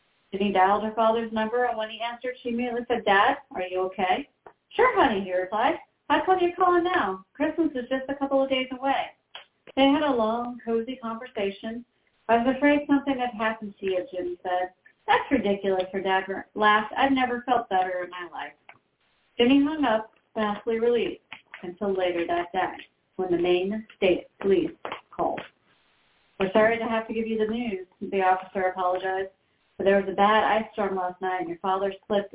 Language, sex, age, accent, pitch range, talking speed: English, female, 40-59, American, 190-240 Hz, 190 wpm